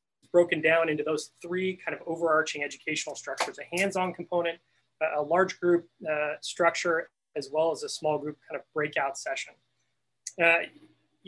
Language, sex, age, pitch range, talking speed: English, male, 30-49, 150-175 Hz, 155 wpm